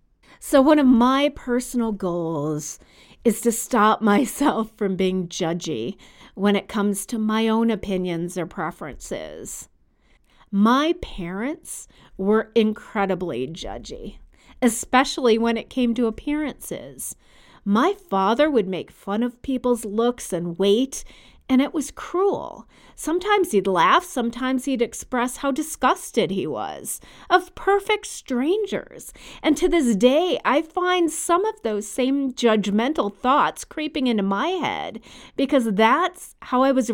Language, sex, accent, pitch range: English, female, American, 195-275 Hz